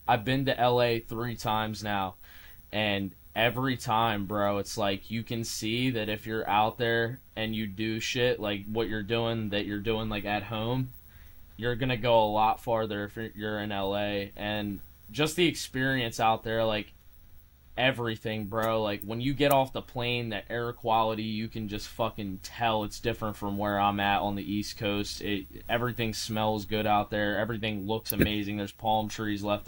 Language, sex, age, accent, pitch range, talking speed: English, male, 20-39, American, 100-115 Hz, 185 wpm